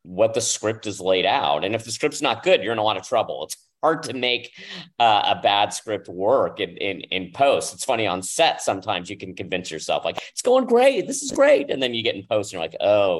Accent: American